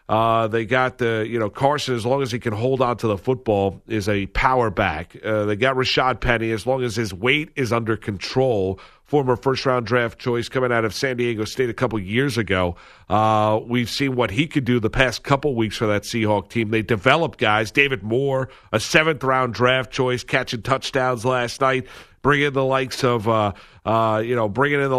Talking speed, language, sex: 215 wpm, English, male